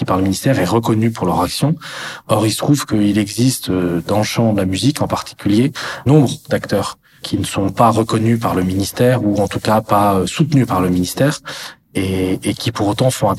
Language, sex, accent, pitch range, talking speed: French, male, French, 100-115 Hz, 215 wpm